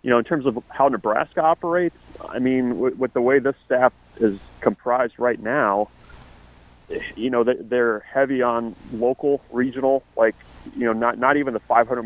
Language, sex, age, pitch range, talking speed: English, male, 30-49, 110-125 Hz, 175 wpm